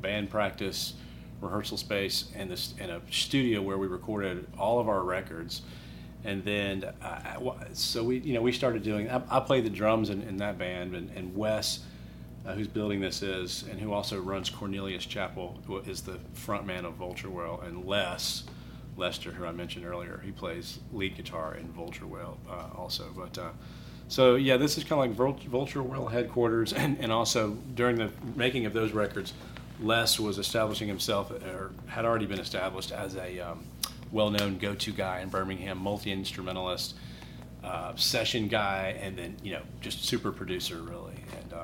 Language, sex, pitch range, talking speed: English, male, 90-115 Hz, 175 wpm